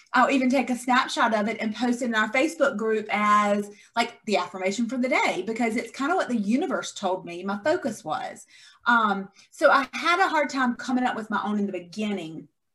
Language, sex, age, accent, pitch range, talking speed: English, female, 30-49, American, 195-245 Hz, 225 wpm